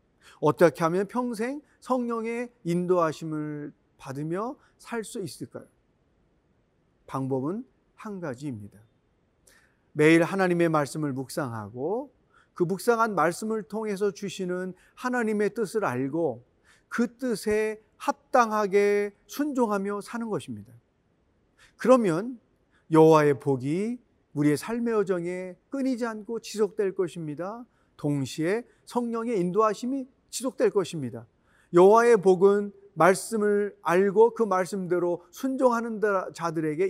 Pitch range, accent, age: 160-220 Hz, native, 40-59